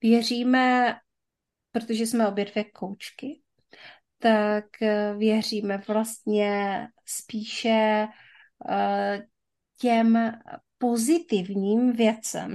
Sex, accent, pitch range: female, native, 195-230 Hz